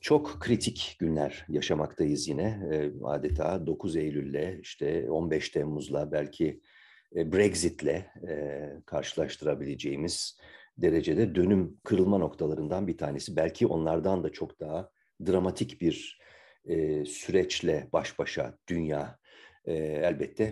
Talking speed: 95 wpm